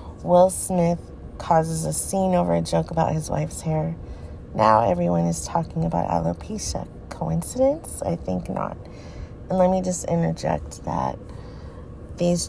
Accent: American